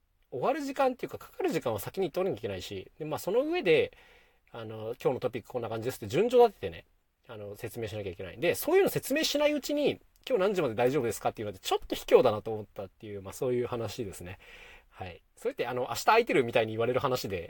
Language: Japanese